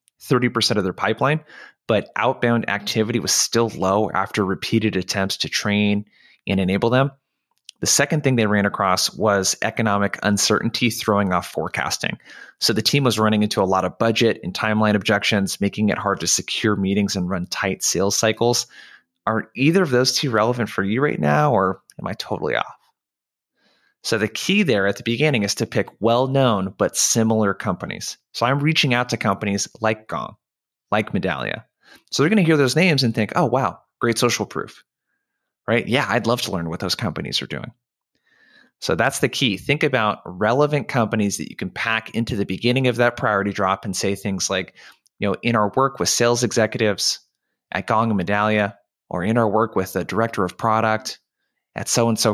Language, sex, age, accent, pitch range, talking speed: English, male, 20-39, American, 100-120 Hz, 185 wpm